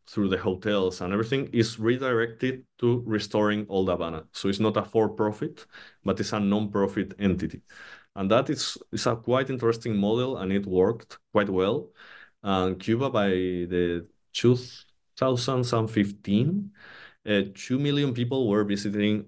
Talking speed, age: 140 wpm, 20-39